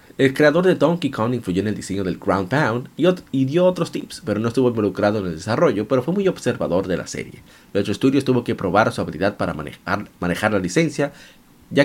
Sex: male